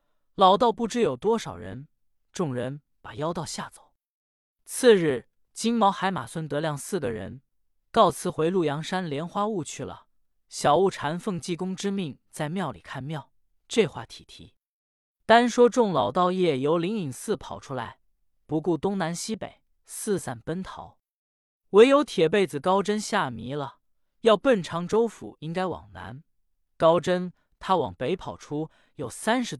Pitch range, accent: 145-205 Hz, native